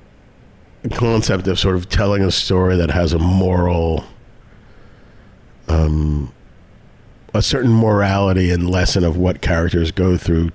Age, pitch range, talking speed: 50-69, 85-105 Hz, 125 wpm